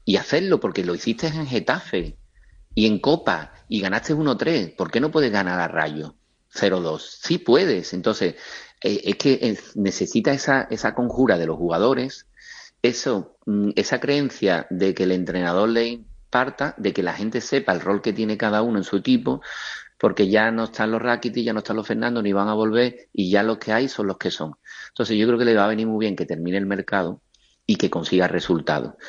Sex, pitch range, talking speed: male, 95-120 Hz, 200 wpm